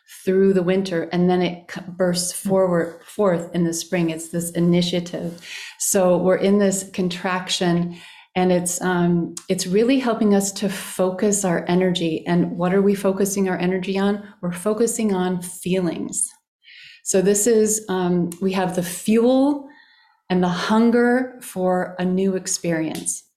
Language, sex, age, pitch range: English, female, 30-49, 180-220 Hz